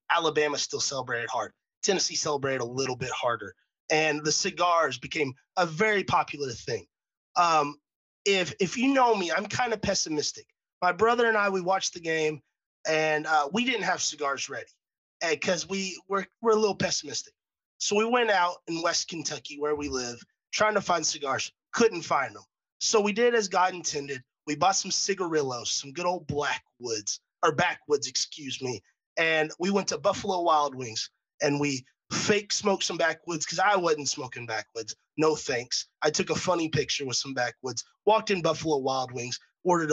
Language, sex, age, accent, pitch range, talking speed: English, male, 30-49, American, 135-185 Hz, 185 wpm